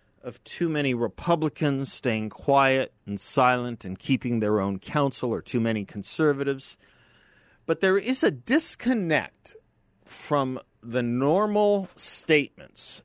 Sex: male